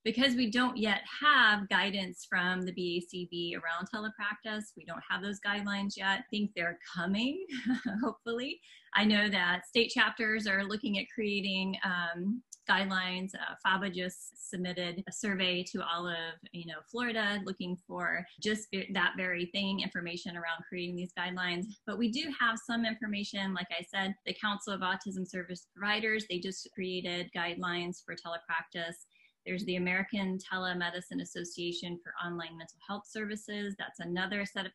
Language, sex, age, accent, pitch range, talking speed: English, female, 20-39, American, 175-210 Hz, 160 wpm